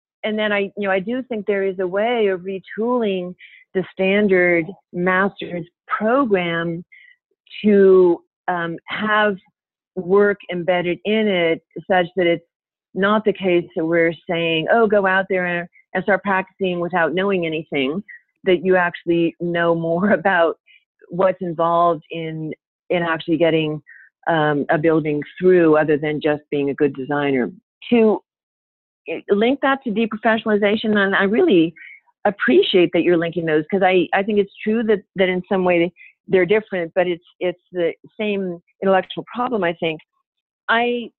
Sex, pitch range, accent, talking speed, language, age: female, 170-210 Hz, American, 150 wpm, English, 40-59